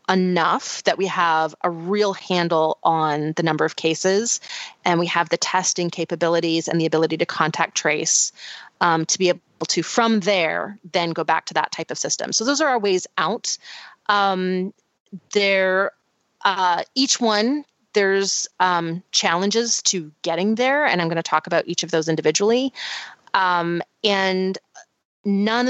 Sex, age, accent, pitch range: female, 30-49, American, 170-205 Hz